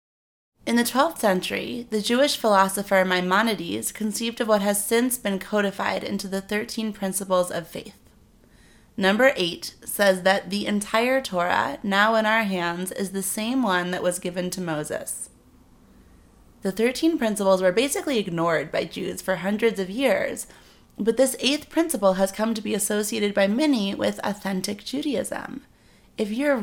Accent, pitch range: American, 190-235 Hz